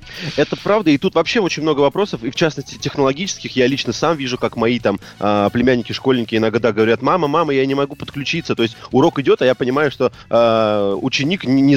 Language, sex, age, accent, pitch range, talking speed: Russian, male, 30-49, native, 115-140 Hz, 200 wpm